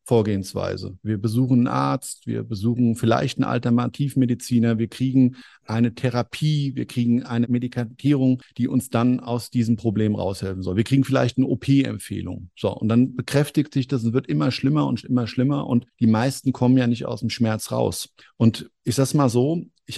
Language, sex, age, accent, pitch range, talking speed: German, male, 50-69, German, 110-130 Hz, 180 wpm